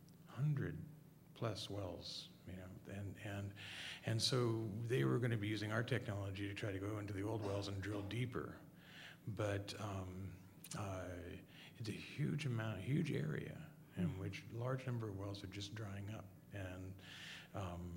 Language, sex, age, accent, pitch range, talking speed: English, male, 40-59, American, 100-130 Hz, 170 wpm